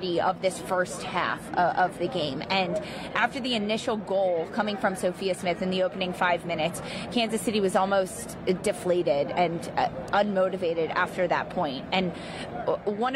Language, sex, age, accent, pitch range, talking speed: English, female, 20-39, American, 185-225 Hz, 160 wpm